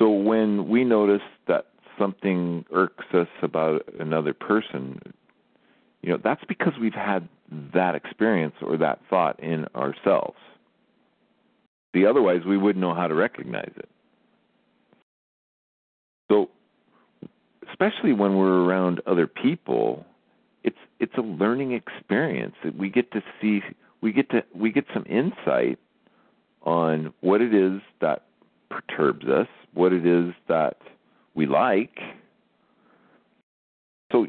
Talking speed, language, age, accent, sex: 125 wpm, English, 40-59, American, male